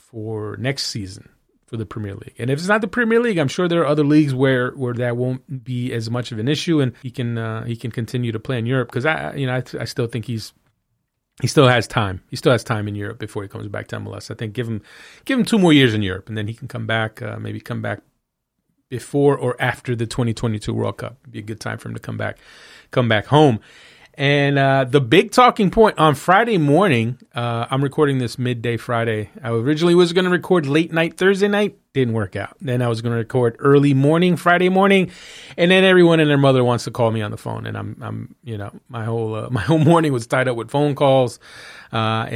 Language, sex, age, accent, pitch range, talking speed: English, male, 30-49, American, 115-145 Hz, 250 wpm